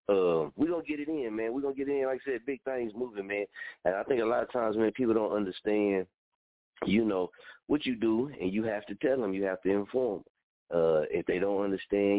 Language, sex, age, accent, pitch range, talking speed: English, male, 30-49, American, 85-105 Hz, 255 wpm